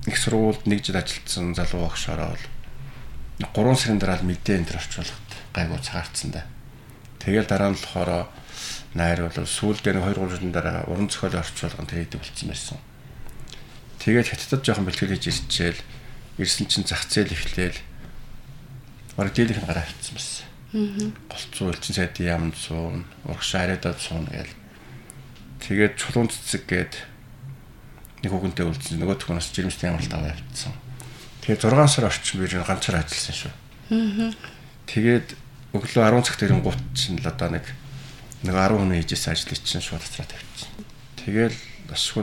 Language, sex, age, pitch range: English, male, 50-69, 90-125 Hz